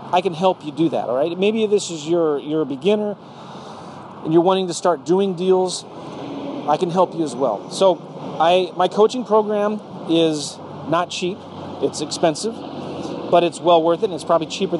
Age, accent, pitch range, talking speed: 40-59, American, 150-185 Hz, 190 wpm